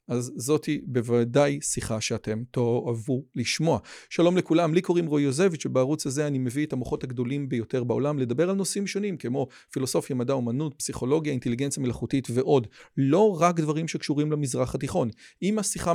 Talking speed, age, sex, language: 160 wpm, 40-59, male, Hebrew